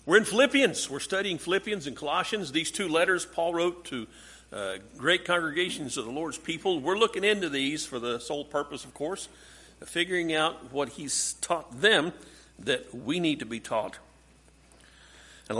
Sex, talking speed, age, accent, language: male, 175 wpm, 50-69, American, English